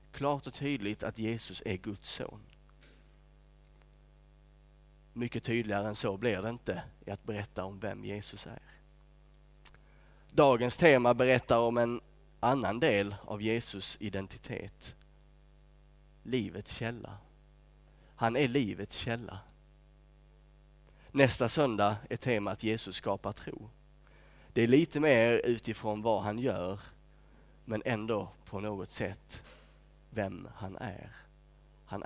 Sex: male